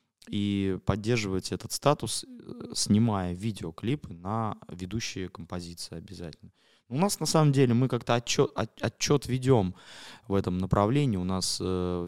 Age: 20-39